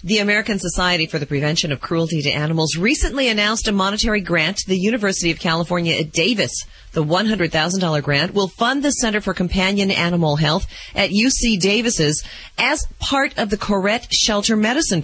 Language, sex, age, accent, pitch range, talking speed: English, female, 40-59, American, 160-215 Hz, 170 wpm